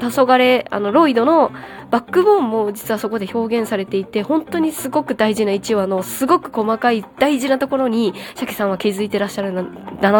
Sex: female